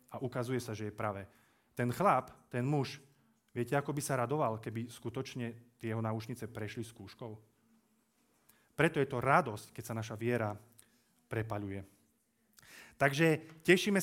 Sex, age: male, 30-49